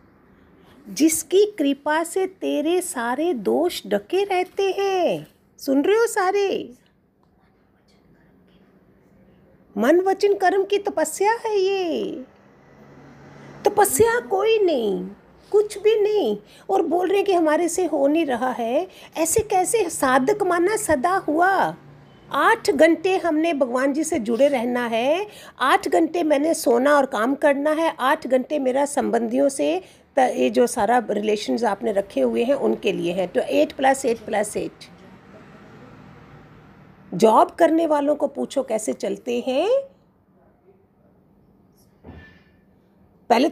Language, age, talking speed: Hindi, 50-69, 125 wpm